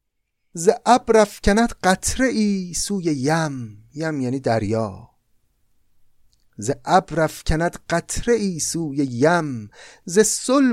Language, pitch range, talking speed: Persian, 120-175 Hz, 110 wpm